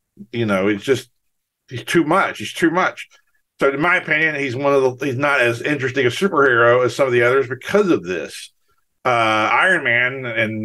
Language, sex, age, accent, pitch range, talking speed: English, male, 50-69, American, 110-130 Hz, 205 wpm